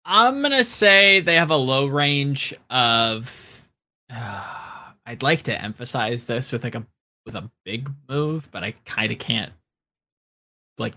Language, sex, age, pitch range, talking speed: English, male, 20-39, 110-145 Hz, 160 wpm